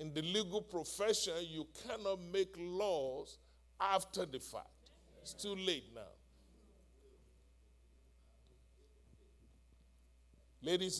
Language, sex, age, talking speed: English, male, 50-69, 85 wpm